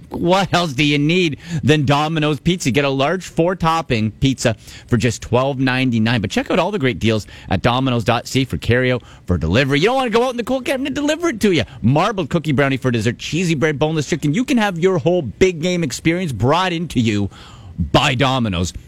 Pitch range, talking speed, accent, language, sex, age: 115-160 Hz, 225 wpm, American, English, male, 40-59